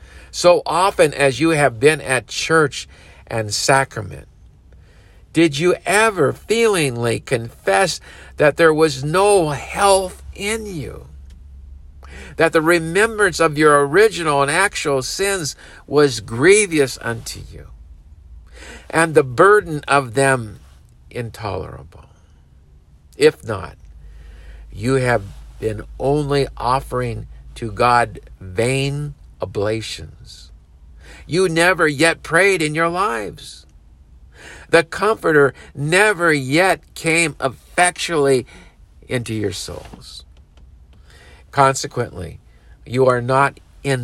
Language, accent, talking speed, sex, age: English, American, 100 wpm, male, 50-69